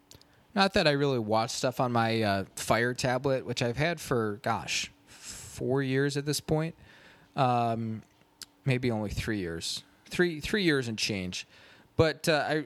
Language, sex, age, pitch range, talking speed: English, male, 20-39, 110-135 Hz, 155 wpm